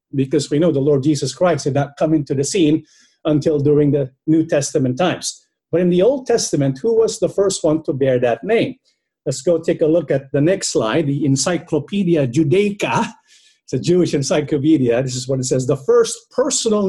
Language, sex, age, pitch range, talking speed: English, male, 50-69, 150-220 Hz, 205 wpm